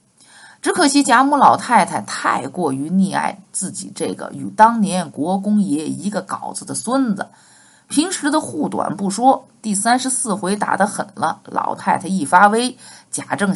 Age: 50-69